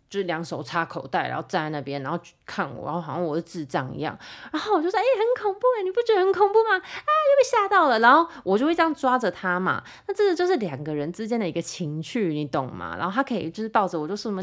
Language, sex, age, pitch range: Chinese, female, 20-39, 175-275 Hz